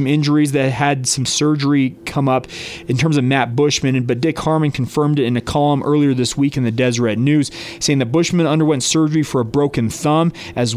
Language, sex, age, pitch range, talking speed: English, male, 30-49, 125-155 Hz, 210 wpm